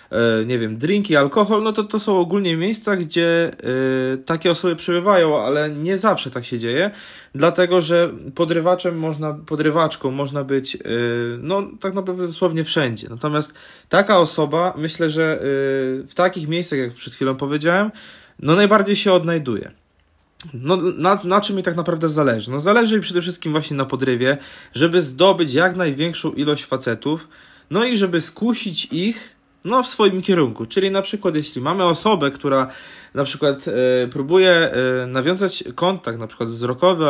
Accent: native